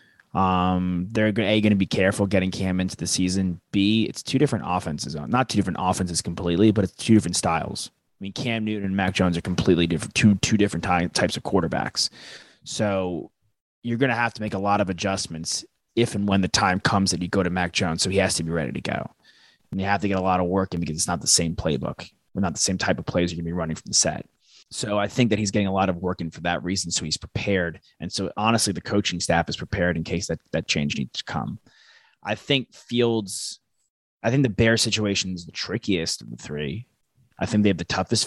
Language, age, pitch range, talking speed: English, 20-39, 85-105 Hz, 250 wpm